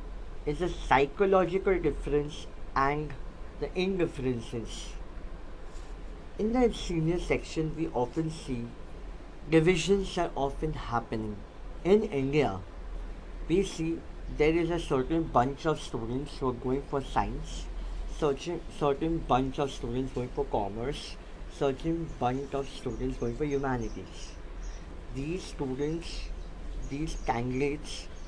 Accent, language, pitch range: Indian, English, 115-155 Hz